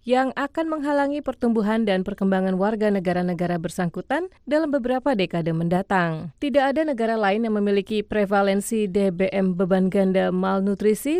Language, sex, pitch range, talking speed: Indonesian, female, 185-245 Hz, 130 wpm